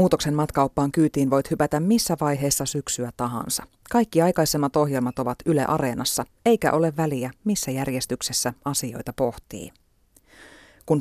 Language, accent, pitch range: Finnish, native, 130-170 Hz